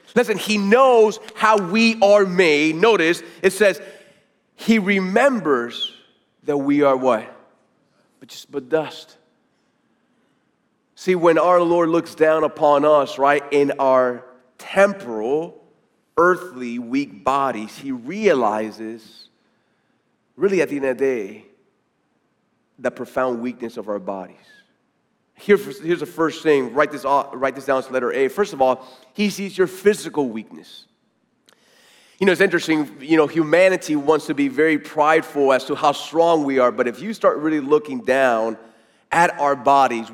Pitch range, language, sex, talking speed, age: 135-185 Hz, English, male, 150 wpm, 30-49